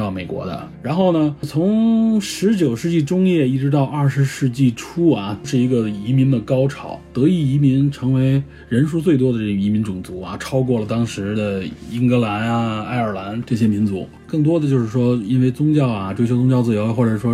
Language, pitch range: Chinese, 110-145 Hz